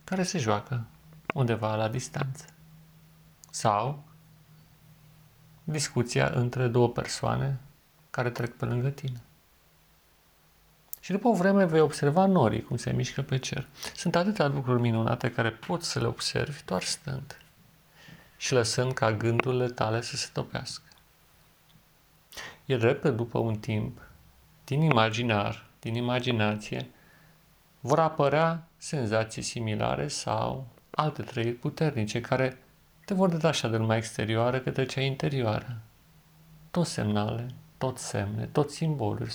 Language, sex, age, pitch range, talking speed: Romanian, male, 40-59, 120-160 Hz, 120 wpm